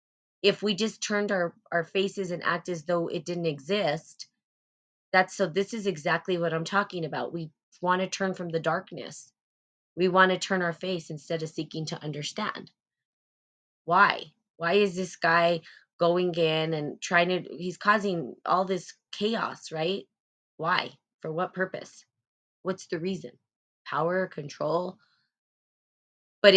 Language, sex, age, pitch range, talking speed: English, female, 20-39, 160-185 Hz, 150 wpm